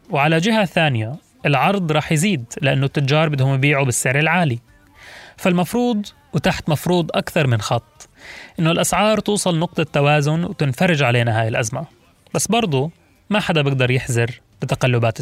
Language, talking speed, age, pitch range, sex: Arabic, 135 wpm, 20-39, 130-175 Hz, male